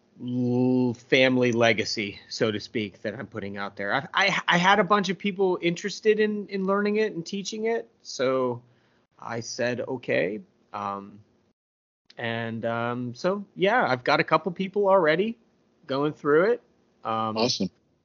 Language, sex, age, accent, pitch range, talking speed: English, male, 30-49, American, 115-185 Hz, 150 wpm